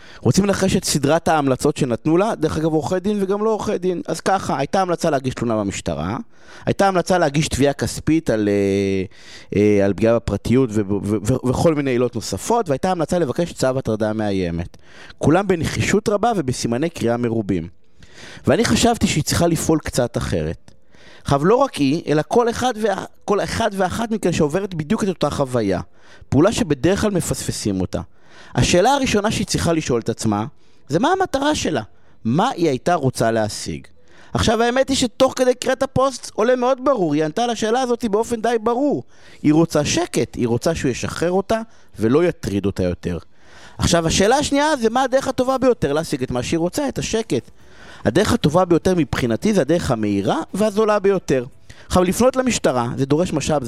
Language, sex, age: Hebrew, male, 30-49